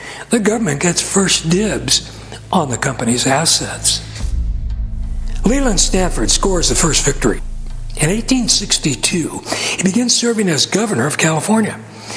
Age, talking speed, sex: 60-79, 120 wpm, male